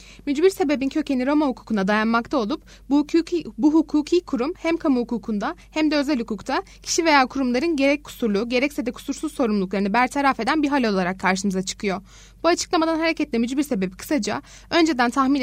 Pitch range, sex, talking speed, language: 220-295 Hz, female, 165 wpm, Turkish